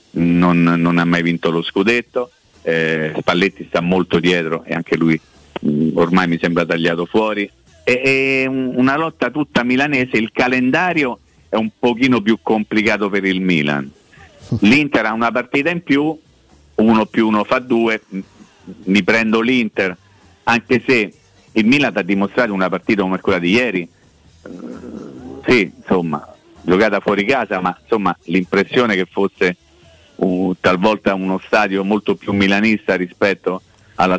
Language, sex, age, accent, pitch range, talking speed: Italian, male, 50-69, native, 90-115 Hz, 140 wpm